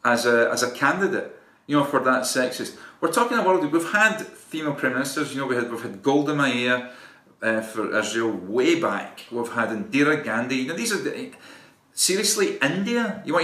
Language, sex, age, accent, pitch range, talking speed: English, male, 40-59, British, 125-185 Hz, 200 wpm